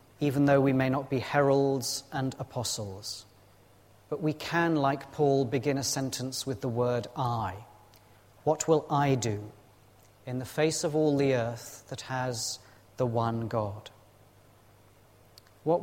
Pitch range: 105-140 Hz